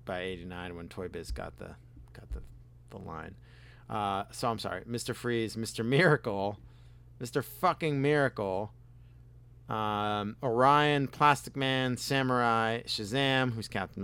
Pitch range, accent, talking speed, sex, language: 100-120 Hz, American, 130 wpm, male, English